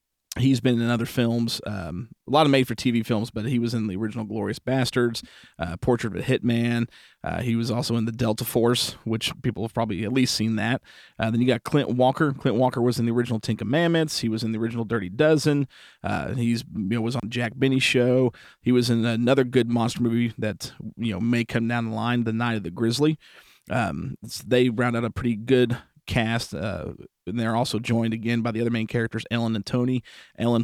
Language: English